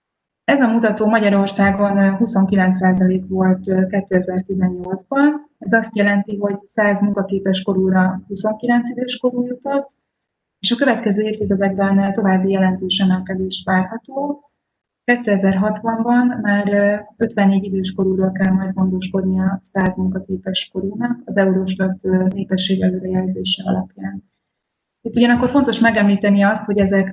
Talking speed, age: 105 wpm, 20-39